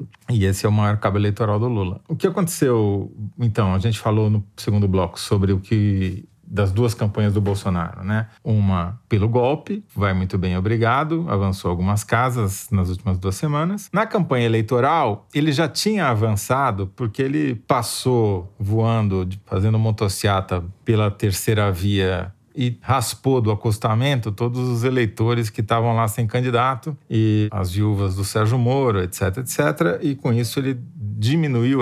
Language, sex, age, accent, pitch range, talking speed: Portuguese, male, 40-59, Brazilian, 100-130 Hz, 155 wpm